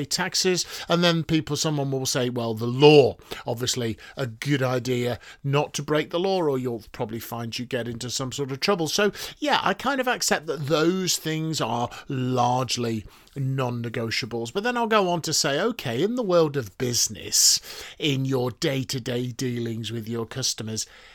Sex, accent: male, British